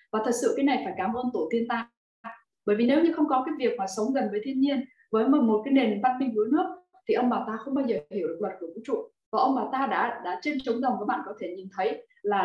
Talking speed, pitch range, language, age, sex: 300 wpm, 210-270 Hz, Vietnamese, 20-39, female